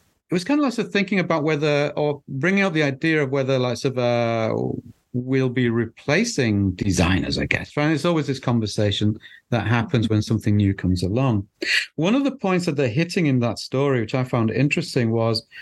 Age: 40-59